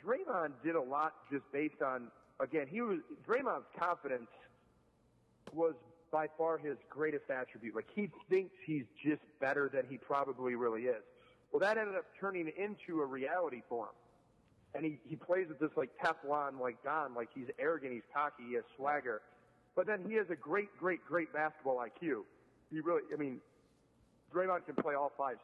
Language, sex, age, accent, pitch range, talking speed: English, male, 40-59, American, 140-180 Hz, 180 wpm